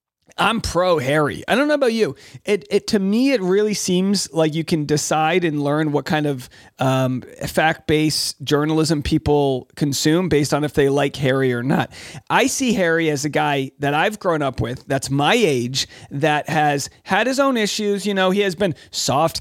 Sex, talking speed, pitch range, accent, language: male, 200 wpm, 140-175 Hz, American, English